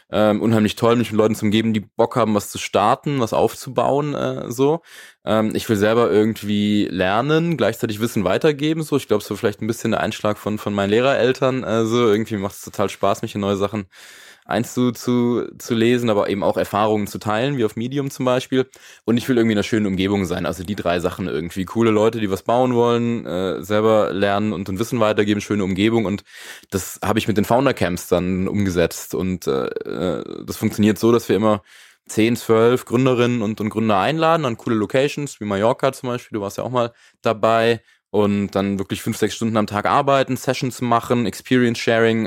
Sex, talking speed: male, 205 wpm